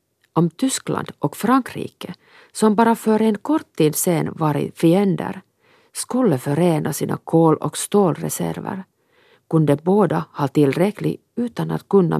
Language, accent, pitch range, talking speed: Swedish, Finnish, 145-205 Hz, 135 wpm